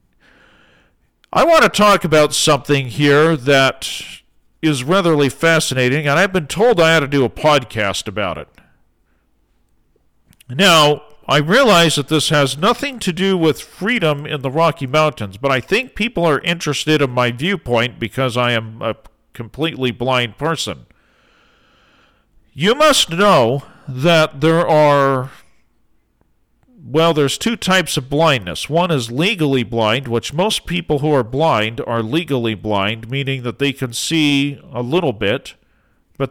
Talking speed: 145 wpm